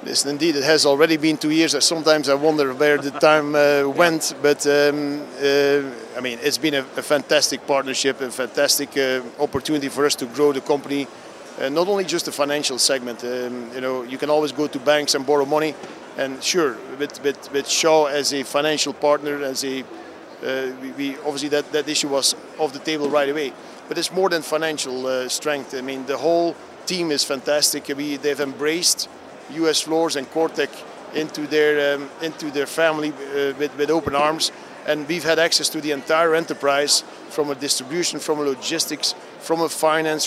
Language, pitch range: English, 140-160 Hz